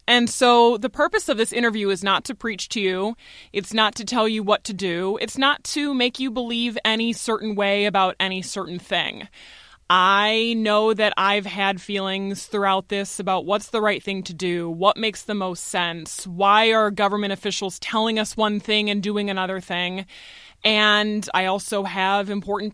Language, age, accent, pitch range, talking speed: English, 20-39, American, 190-235 Hz, 185 wpm